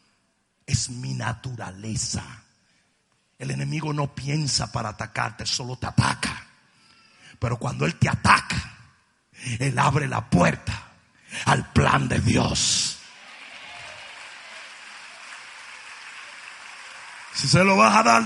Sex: male